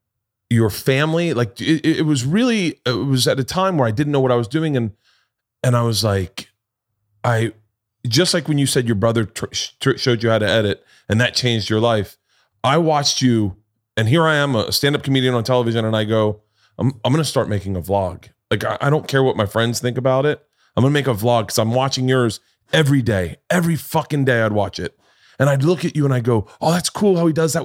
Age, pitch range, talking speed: 30-49, 120-170 Hz, 245 wpm